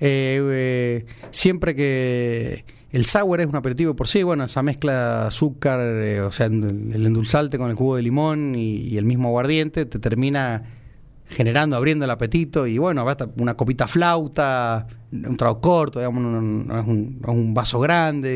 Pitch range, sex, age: 120-165 Hz, male, 30-49